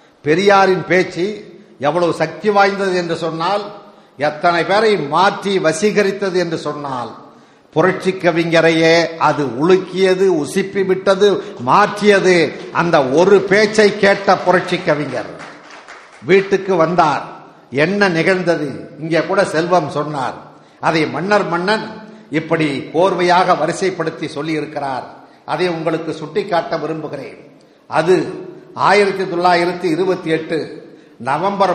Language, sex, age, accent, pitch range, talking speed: Tamil, male, 60-79, native, 160-195 Hz, 85 wpm